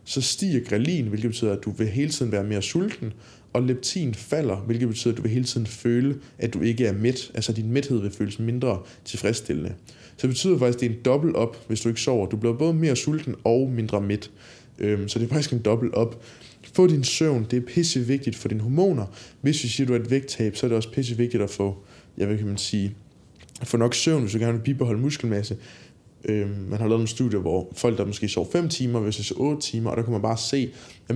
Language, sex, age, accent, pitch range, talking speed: Danish, male, 20-39, native, 110-135 Hz, 240 wpm